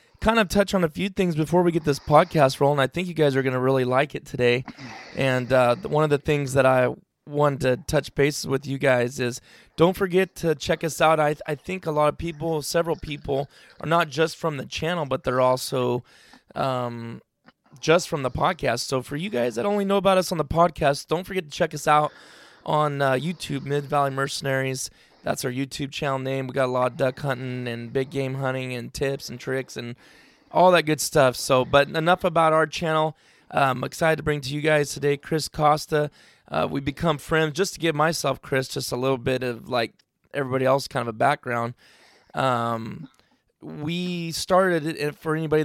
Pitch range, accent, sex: 130-160 Hz, American, male